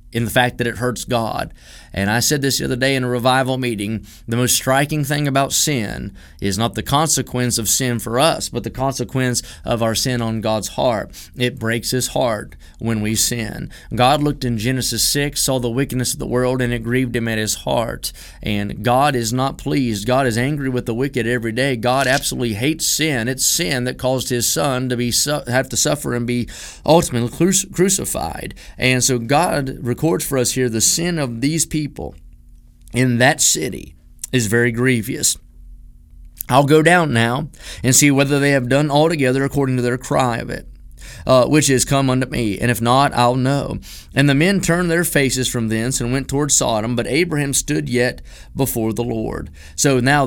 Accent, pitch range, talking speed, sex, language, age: American, 120-140 Hz, 195 wpm, male, English, 30-49